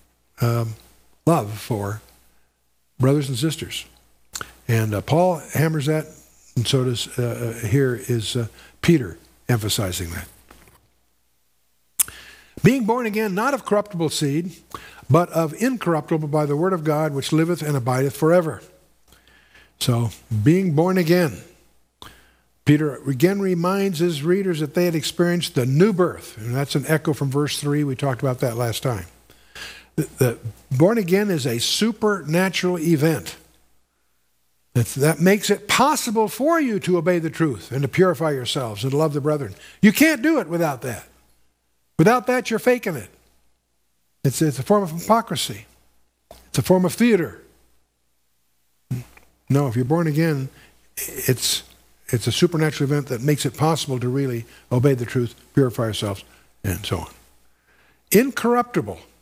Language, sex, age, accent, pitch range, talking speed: English, male, 60-79, American, 100-170 Hz, 145 wpm